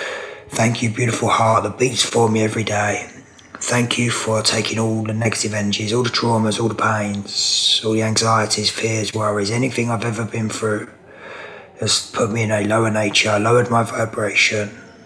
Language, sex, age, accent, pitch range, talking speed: English, male, 20-39, British, 110-120 Hz, 175 wpm